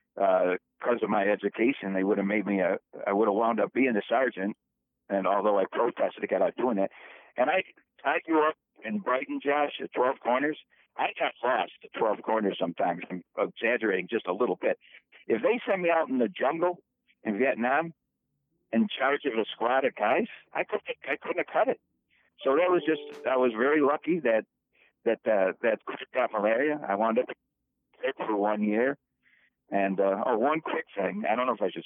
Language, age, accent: English, 60-79, American